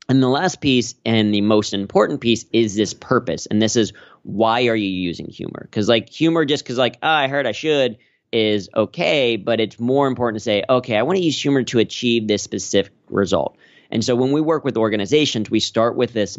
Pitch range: 100-125 Hz